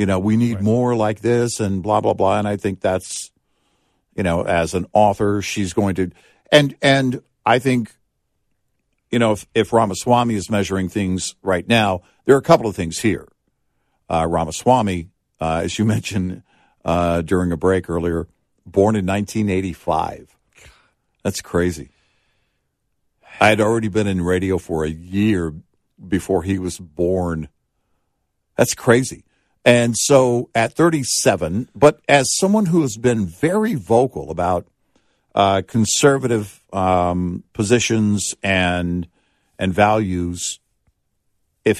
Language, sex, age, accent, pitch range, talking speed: English, male, 60-79, American, 90-115 Hz, 140 wpm